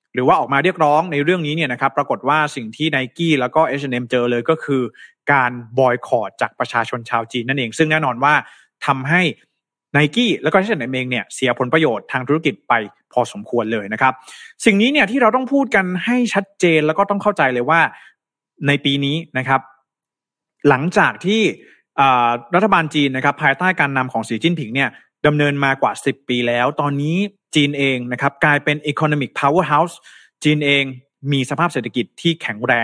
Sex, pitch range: male, 125-160 Hz